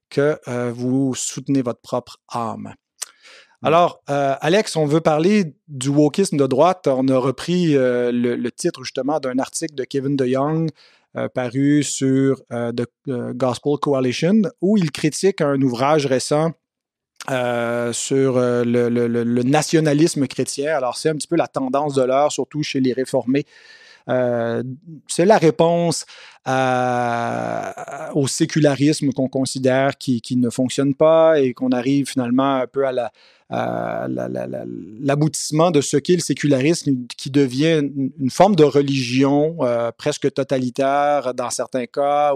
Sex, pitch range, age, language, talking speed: male, 125-150 Hz, 30-49, French, 145 wpm